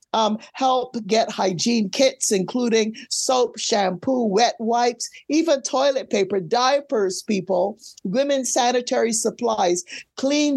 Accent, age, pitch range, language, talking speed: American, 50-69, 220-260 Hz, English, 110 wpm